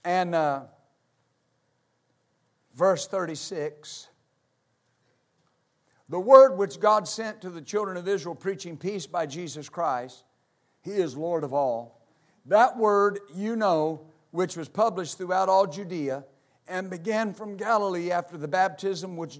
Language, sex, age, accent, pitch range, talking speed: English, male, 50-69, American, 165-225 Hz, 130 wpm